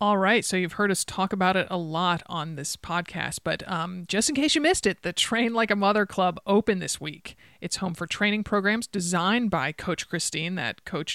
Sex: male